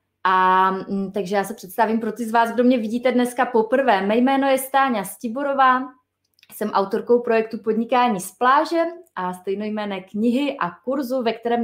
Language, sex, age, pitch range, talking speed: Czech, female, 20-39, 200-245 Hz, 170 wpm